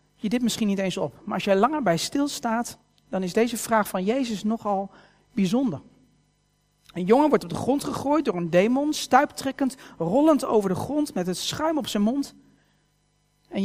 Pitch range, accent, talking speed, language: 165-240 Hz, Dutch, 185 wpm, Dutch